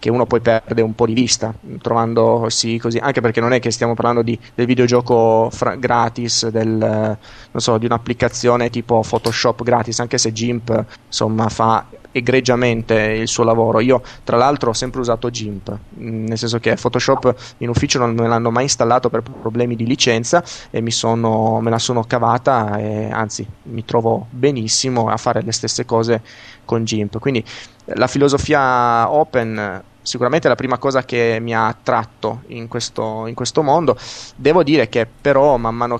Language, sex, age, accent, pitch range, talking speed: Italian, male, 20-39, native, 115-125 Hz, 175 wpm